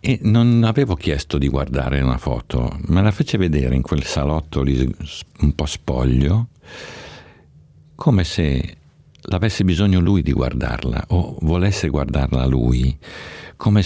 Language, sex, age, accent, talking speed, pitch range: Italian, male, 50-69, native, 135 wpm, 70-100 Hz